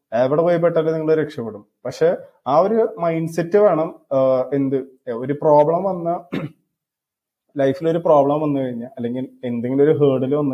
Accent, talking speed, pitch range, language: native, 135 wpm, 130-155 Hz, Malayalam